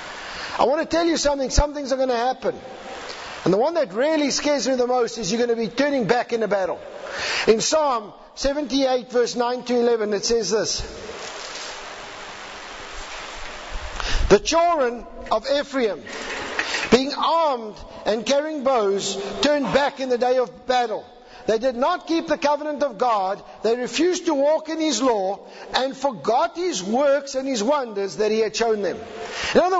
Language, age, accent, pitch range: English, 50-69, South African, 240-315 Hz